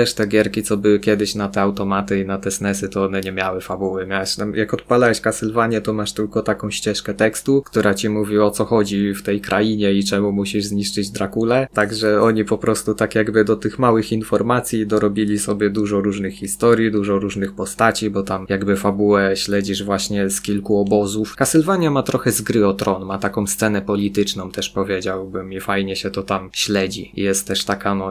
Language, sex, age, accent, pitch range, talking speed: Polish, male, 20-39, native, 95-110 Hz, 200 wpm